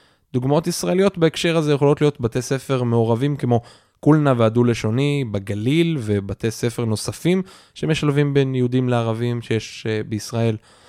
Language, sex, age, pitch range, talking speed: Hebrew, male, 20-39, 110-140 Hz, 120 wpm